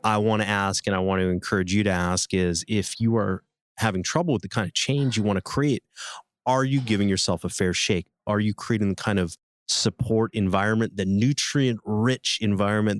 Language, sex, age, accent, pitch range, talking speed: English, male, 30-49, American, 95-125 Hz, 210 wpm